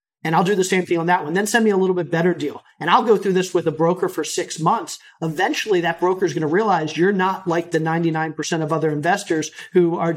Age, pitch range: 40-59, 160-185 Hz